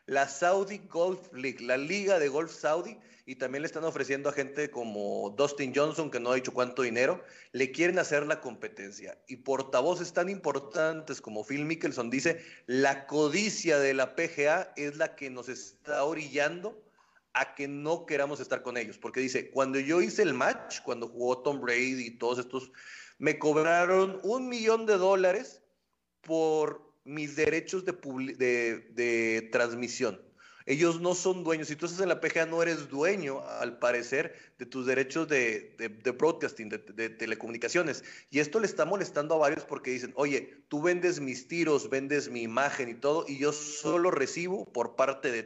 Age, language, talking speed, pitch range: 40-59, Spanish, 175 wpm, 130-170 Hz